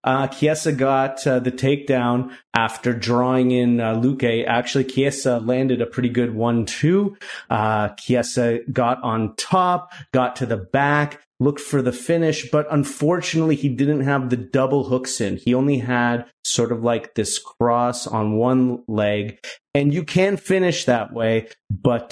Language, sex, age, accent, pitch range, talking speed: English, male, 30-49, American, 115-145 Hz, 155 wpm